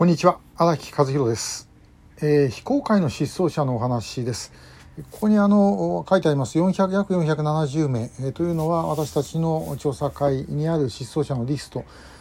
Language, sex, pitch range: Japanese, male, 140-175 Hz